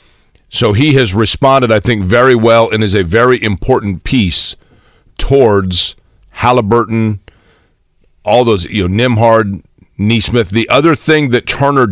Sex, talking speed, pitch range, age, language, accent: male, 135 wpm, 100-125 Hz, 40-59, English, American